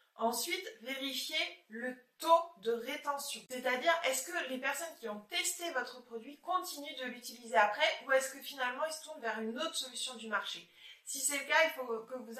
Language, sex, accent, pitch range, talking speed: French, female, French, 225-290 Hz, 200 wpm